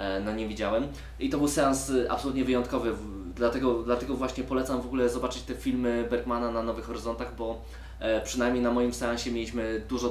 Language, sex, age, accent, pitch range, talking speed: Polish, male, 20-39, native, 110-125 Hz, 170 wpm